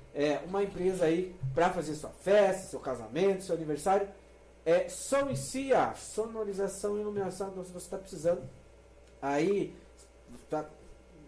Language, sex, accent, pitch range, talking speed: Portuguese, male, Brazilian, 150-220 Hz, 130 wpm